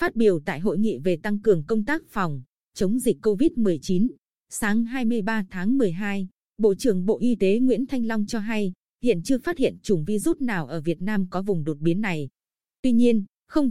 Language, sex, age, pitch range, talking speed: Vietnamese, female, 20-39, 185-235 Hz, 200 wpm